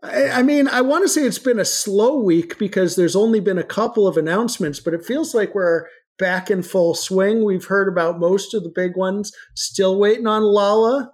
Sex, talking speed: male, 215 wpm